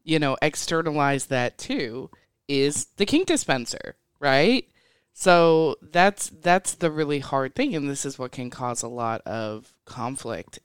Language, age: English, 20-39